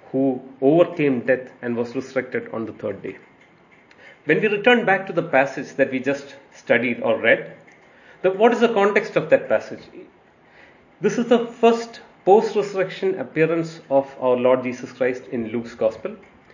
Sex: male